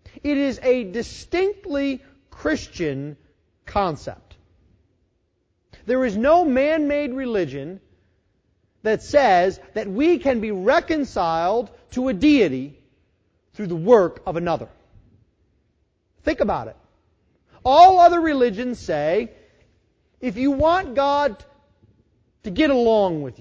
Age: 40-59